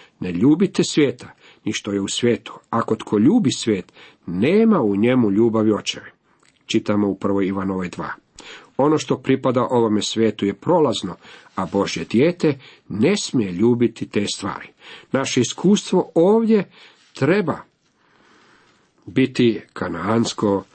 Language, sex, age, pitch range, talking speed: Croatian, male, 50-69, 105-140 Hz, 120 wpm